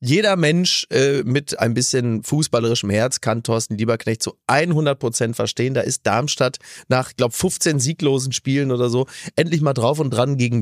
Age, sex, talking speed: 30-49, male, 175 wpm